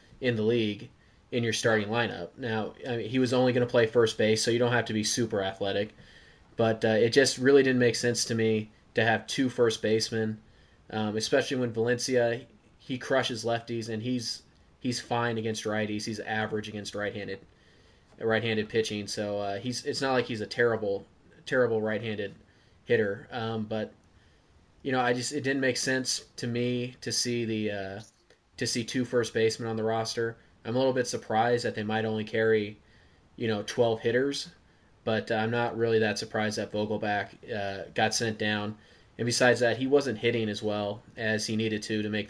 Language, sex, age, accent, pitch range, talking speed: English, male, 20-39, American, 105-120 Hz, 200 wpm